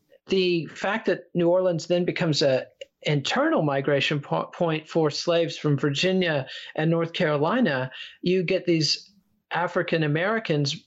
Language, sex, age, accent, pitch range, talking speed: English, male, 40-59, American, 145-195 Hz, 125 wpm